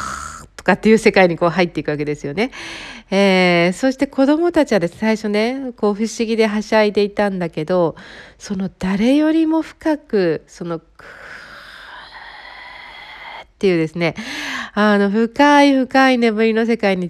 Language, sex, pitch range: Japanese, female, 170-260 Hz